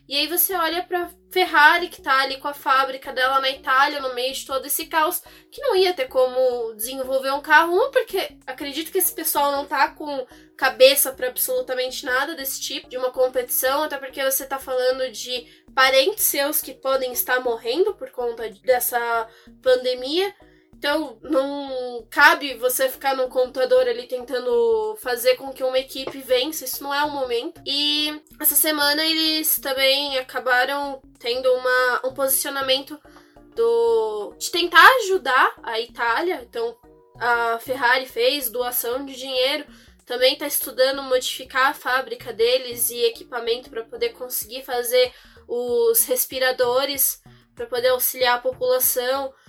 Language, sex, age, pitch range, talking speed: Portuguese, female, 10-29, 255-360 Hz, 155 wpm